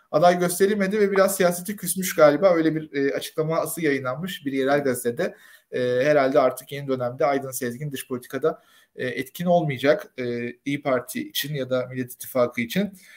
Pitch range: 130-160 Hz